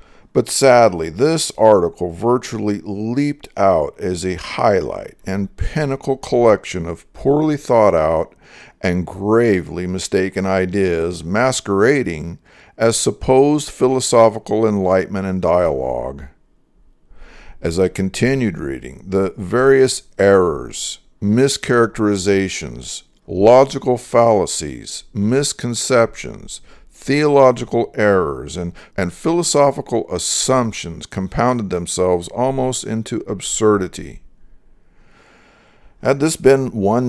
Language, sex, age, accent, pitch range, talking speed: English, male, 50-69, American, 95-125 Hz, 85 wpm